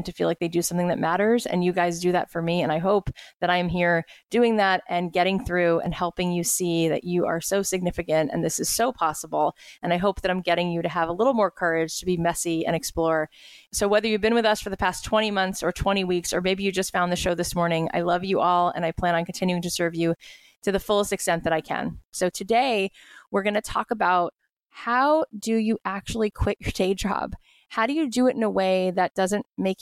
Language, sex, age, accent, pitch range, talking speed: English, female, 20-39, American, 175-215 Hz, 255 wpm